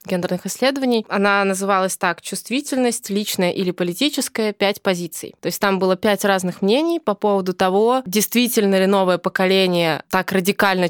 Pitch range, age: 185-215 Hz, 20-39